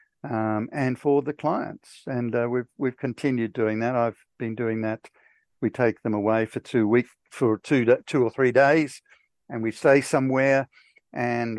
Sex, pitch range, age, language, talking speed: male, 115-135 Hz, 60-79, English, 175 wpm